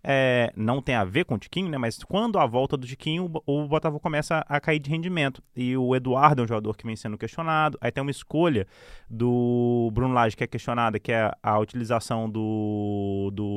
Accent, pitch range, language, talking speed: Brazilian, 115-155 Hz, Portuguese, 215 wpm